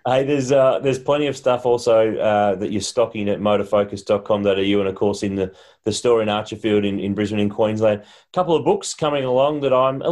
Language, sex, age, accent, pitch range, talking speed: English, male, 30-49, Australian, 105-125 Hz, 220 wpm